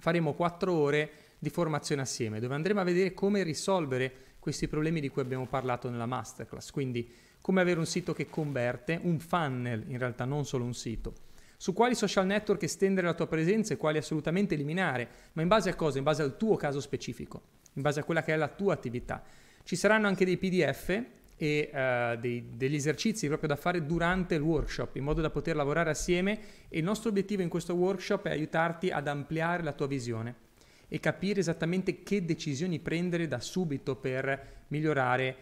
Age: 30-49